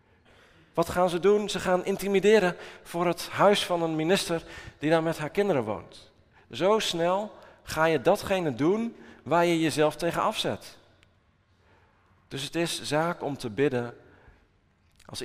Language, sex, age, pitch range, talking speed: Dutch, male, 40-59, 115-180 Hz, 150 wpm